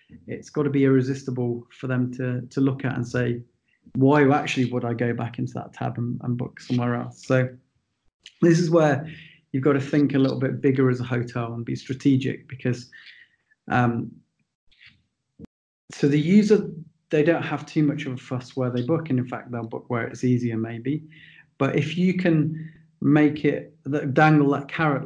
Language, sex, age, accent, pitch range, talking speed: English, male, 30-49, British, 125-155 Hz, 190 wpm